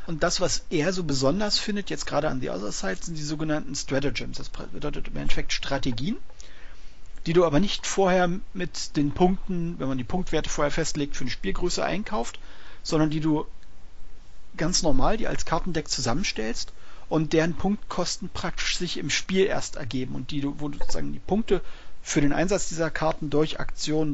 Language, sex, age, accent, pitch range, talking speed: German, male, 40-59, German, 140-180 Hz, 180 wpm